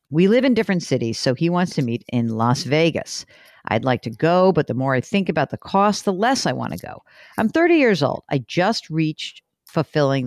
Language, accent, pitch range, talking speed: English, American, 135-195 Hz, 230 wpm